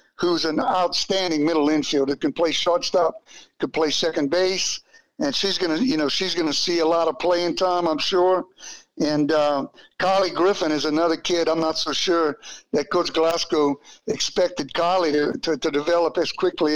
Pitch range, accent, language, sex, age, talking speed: 150-180 Hz, American, English, male, 60-79, 175 wpm